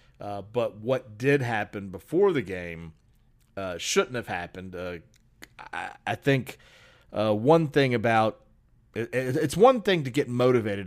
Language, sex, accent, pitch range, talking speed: English, male, American, 100-130 Hz, 155 wpm